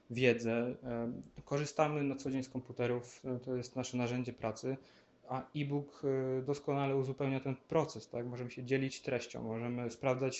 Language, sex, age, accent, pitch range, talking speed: Polish, male, 20-39, native, 125-145 Hz, 145 wpm